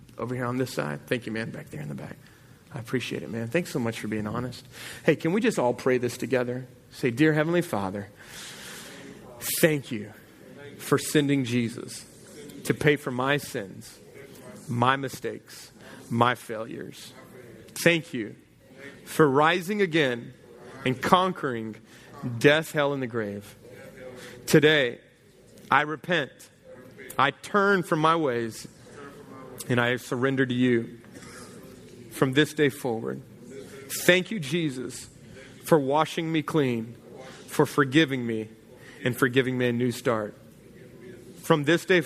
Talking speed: 140 wpm